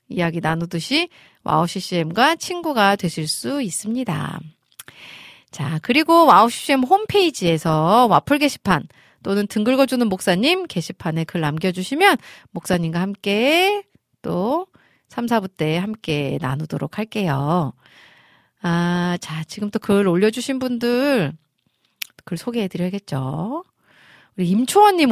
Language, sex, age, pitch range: Korean, female, 40-59, 165-245 Hz